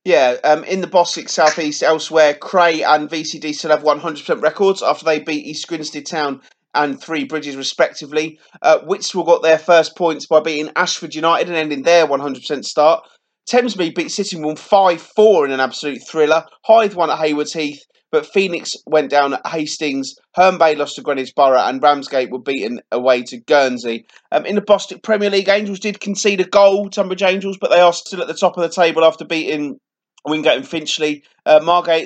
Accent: British